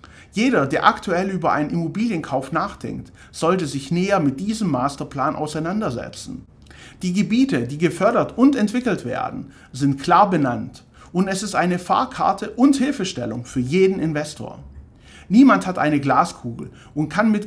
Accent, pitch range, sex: German, 135-200 Hz, male